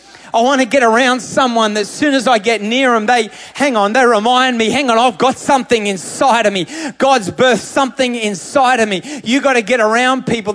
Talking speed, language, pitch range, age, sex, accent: 215 wpm, English, 210-260 Hz, 30-49, male, Australian